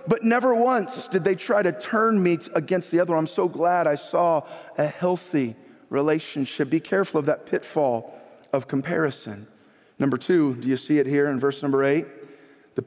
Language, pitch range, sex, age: English, 130-175 Hz, male, 40-59